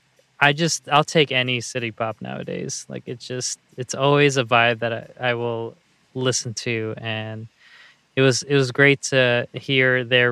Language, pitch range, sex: English, 115-140 Hz, male